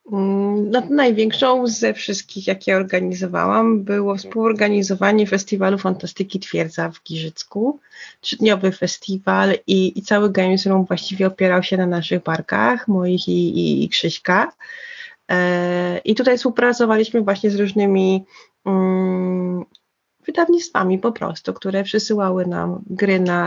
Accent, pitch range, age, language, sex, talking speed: native, 185-225 Hz, 30-49, Polish, female, 115 wpm